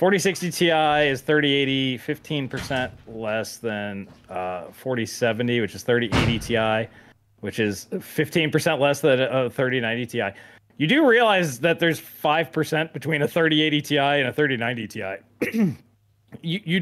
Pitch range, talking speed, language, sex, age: 110-155 Hz, 130 wpm, English, male, 20-39